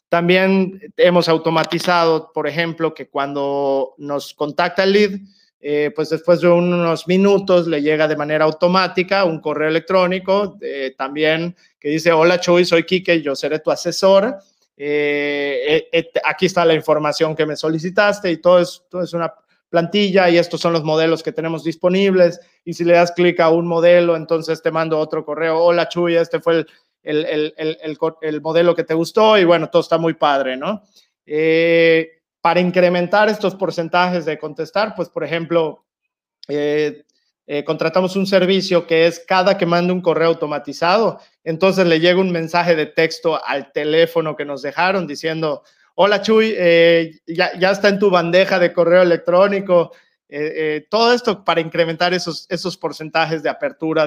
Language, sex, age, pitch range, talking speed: Spanish, male, 30-49, 155-180 Hz, 170 wpm